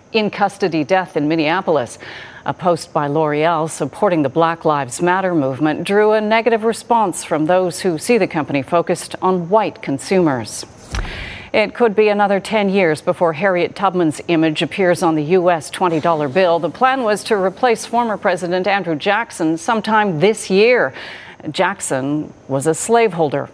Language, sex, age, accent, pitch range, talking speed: English, female, 40-59, American, 165-225 Hz, 155 wpm